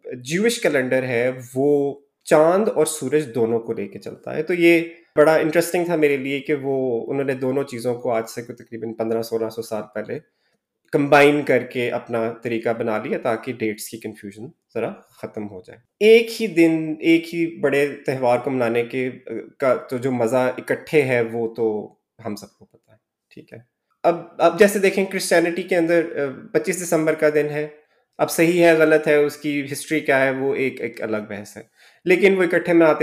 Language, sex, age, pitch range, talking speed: Urdu, male, 20-39, 115-155 Hz, 190 wpm